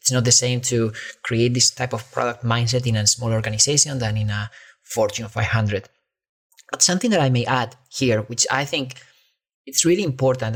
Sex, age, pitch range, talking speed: male, 30-49, 125-165 Hz, 190 wpm